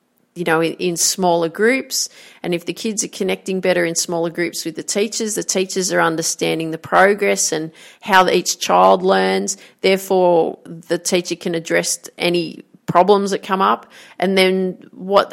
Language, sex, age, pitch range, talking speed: English, female, 40-59, 170-200 Hz, 165 wpm